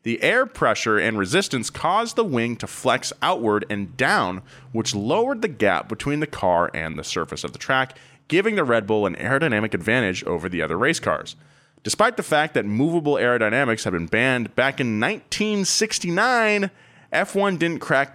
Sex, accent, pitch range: male, American, 105-150 Hz